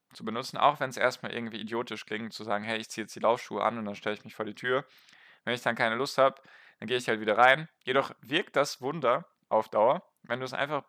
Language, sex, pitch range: German, male, 110-135 Hz